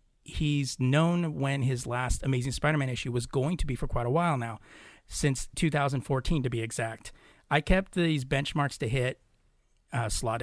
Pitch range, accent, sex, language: 120-145 Hz, American, male, English